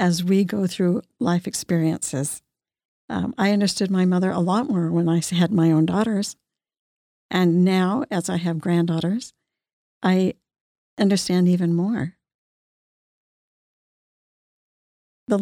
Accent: American